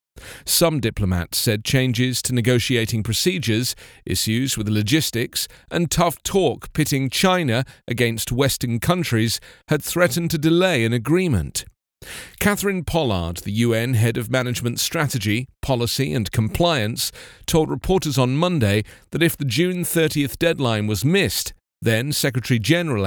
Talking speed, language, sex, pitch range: 125 wpm, English, male, 110-160 Hz